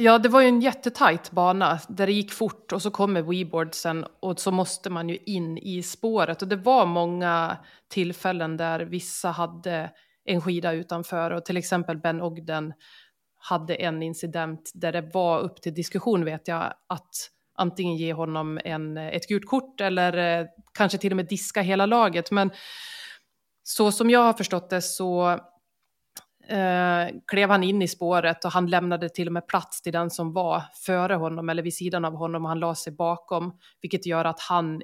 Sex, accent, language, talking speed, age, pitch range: female, native, Swedish, 185 wpm, 30-49, 170-195 Hz